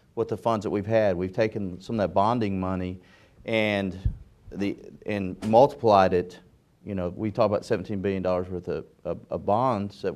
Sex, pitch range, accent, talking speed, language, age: male, 90-105 Hz, American, 190 wpm, English, 40-59